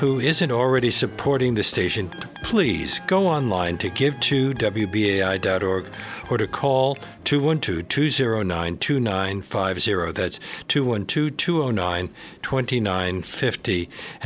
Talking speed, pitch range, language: 80 wpm, 100-145 Hz, English